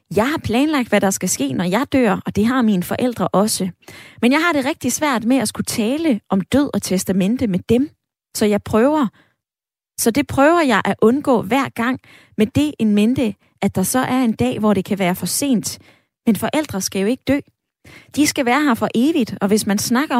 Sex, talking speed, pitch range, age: female, 225 wpm, 195-260 Hz, 20-39